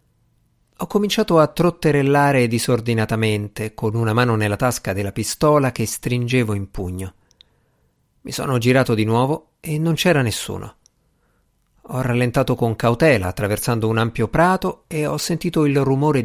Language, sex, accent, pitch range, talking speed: Italian, male, native, 110-150 Hz, 140 wpm